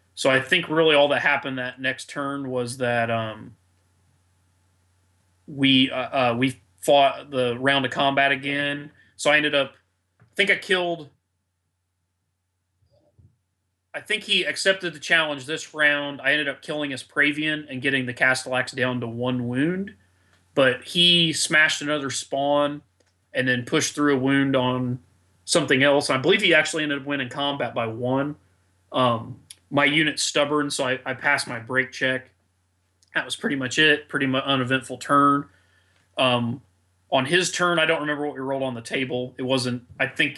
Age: 30-49